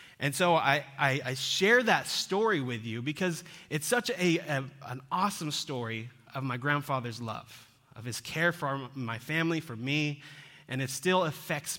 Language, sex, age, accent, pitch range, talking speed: English, male, 30-49, American, 135-170 Hz, 175 wpm